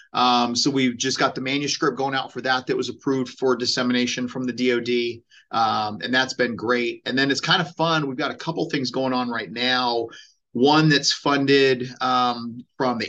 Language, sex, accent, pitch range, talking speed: English, male, American, 120-135 Hz, 205 wpm